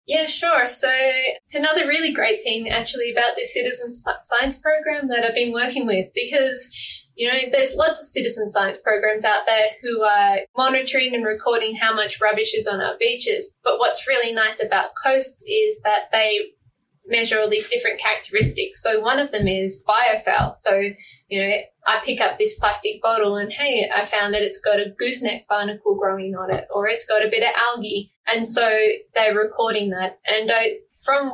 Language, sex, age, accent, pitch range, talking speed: English, female, 10-29, Australian, 210-265 Hz, 190 wpm